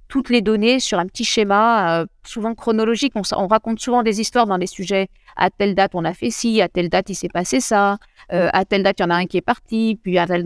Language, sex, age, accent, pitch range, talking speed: French, female, 50-69, French, 180-230 Hz, 275 wpm